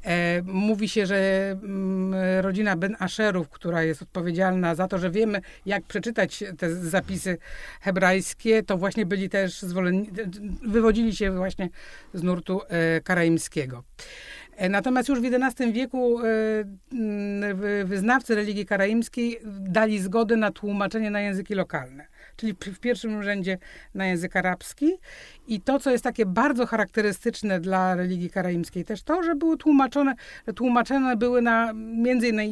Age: 50-69